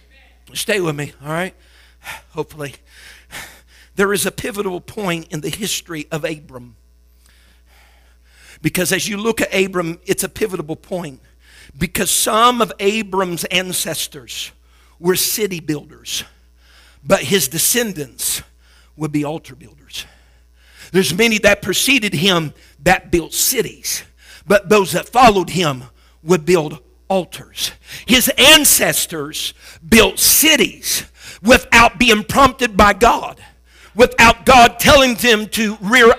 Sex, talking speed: male, 120 wpm